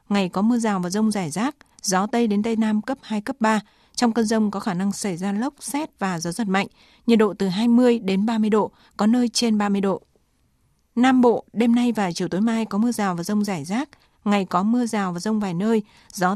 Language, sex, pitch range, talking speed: Vietnamese, female, 195-235 Hz, 245 wpm